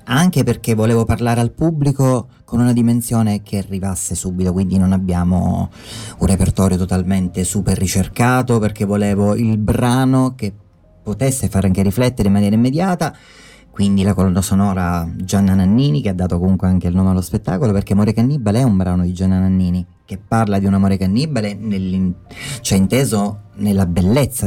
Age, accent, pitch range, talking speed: 30-49, native, 95-120 Hz, 160 wpm